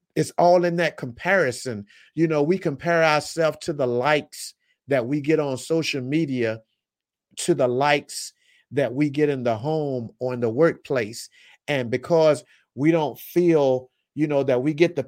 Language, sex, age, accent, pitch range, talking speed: English, male, 50-69, American, 130-160 Hz, 170 wpm